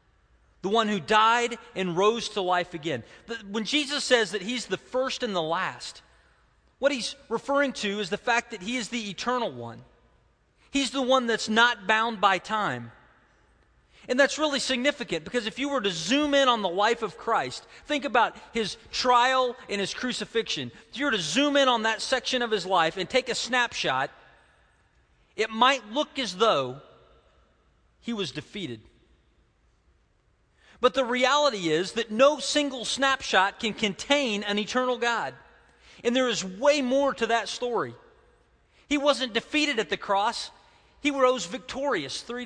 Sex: male